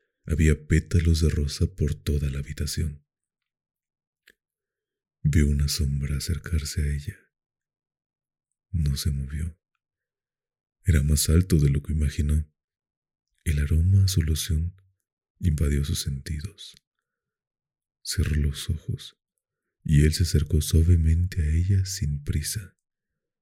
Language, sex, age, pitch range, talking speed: Spanish, male, 40-59, 75-85 Hz, 115 wpm